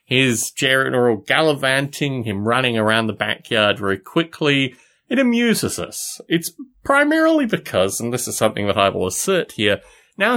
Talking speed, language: 150 wpm, English